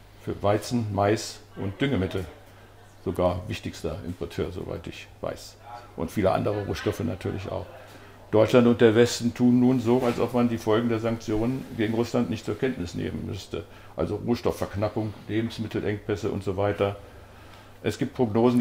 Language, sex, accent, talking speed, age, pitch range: English, male, German, 150 wpm, 60-79, 100-115 Hz